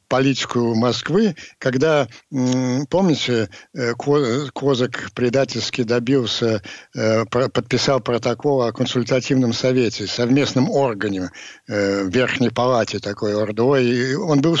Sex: male